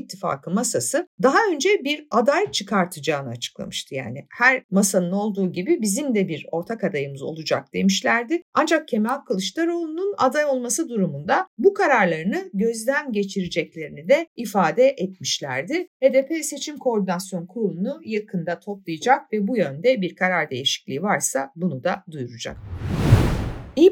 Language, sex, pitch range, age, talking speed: Turkish, female, 185-285 Hz, 50-69, 125 wpm